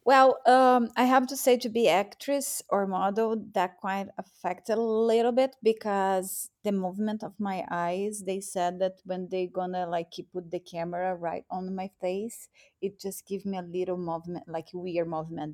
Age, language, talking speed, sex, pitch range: 30-49, English, 190 wpm, female, 180-210 Hz